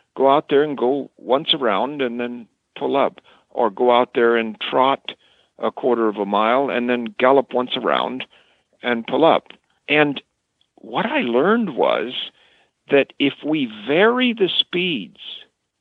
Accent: American